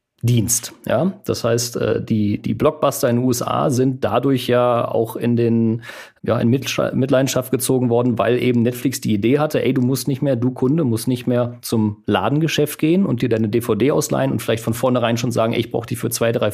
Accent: German